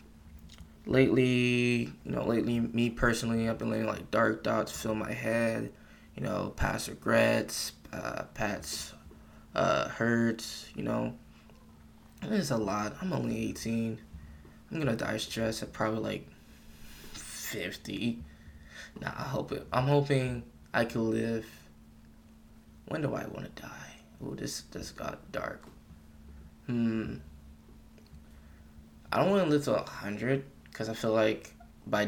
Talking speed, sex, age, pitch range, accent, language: 135 wpm, male, 20-39, 75-115 Hz, American, English